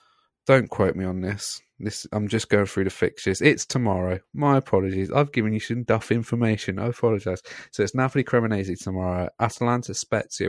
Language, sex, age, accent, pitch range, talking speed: English, male, 30-49, British, 95-120 Hz, 170 wpm